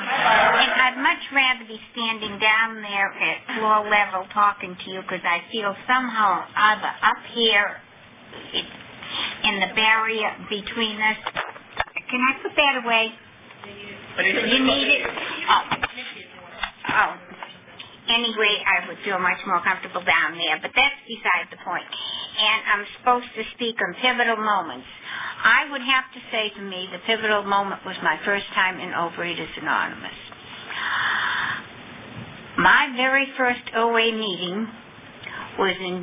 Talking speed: 140 wpm